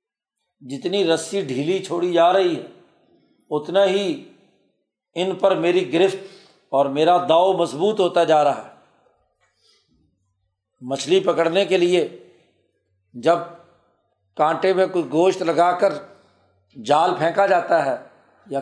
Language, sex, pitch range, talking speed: Urdu, male, 165-195 Hz, 120 wpm